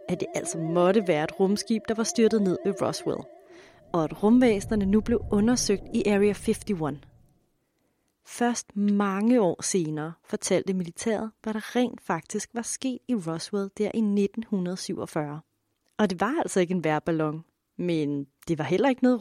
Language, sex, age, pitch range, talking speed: Danish, female, 30-49, 175-230 Hz, 160 wpm